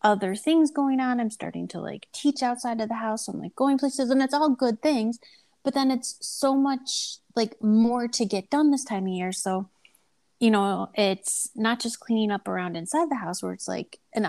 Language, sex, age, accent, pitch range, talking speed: English, female, 30-49, American, 200-275 Hz, 220 wpm